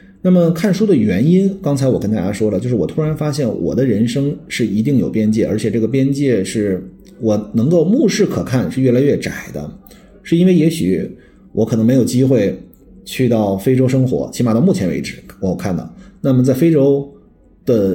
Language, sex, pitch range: Chinese, male, 105-165 Hz